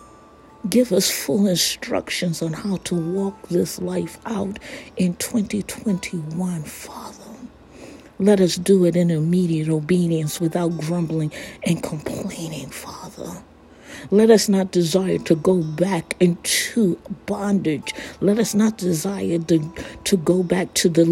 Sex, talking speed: female, 130 wpm